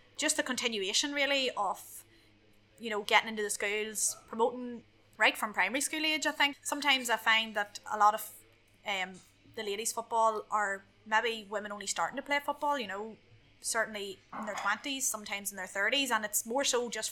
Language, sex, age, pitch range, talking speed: English, female, 20-39, 205-255 Hz, 185 wpm